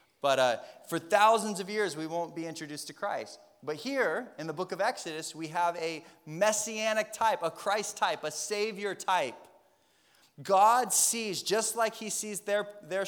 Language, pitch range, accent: English, 145-195 Hz, American